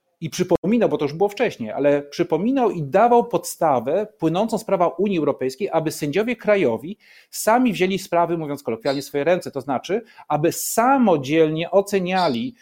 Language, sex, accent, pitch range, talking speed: Polish, male, native, 135-180 Hz, 155 wpm